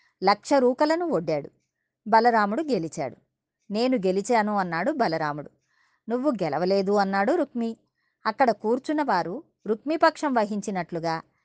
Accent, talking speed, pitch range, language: native, 95 wpm, 185-260 Hz, Telugu